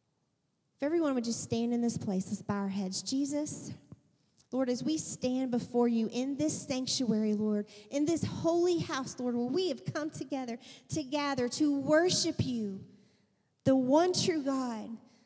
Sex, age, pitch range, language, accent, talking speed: female, 40-59, 215-275 Hz, English, American, 165 wpm